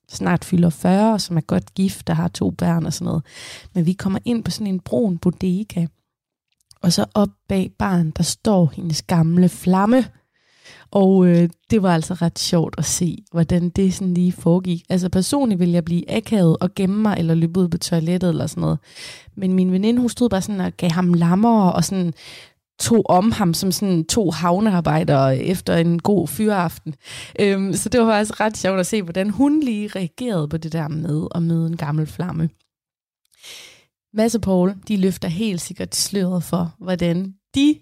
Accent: native